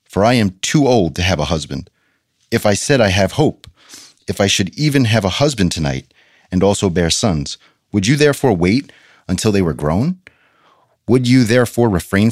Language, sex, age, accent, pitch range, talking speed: English, male, 30-49, American, 85-115 Hz, 190 wpm